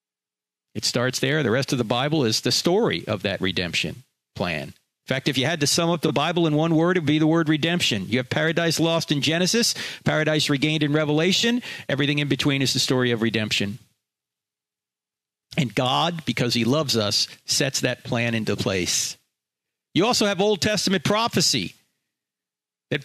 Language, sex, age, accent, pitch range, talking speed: English, male, 40-59, American, 120-175 Hz, 180 wpm